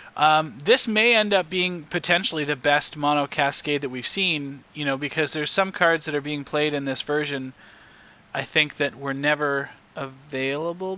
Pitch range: 125-150 Hz